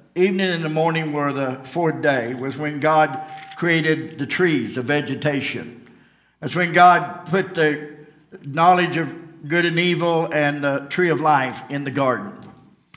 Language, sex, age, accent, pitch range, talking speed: English, male, 60-79, American, 150-180 Hz, 155 wpm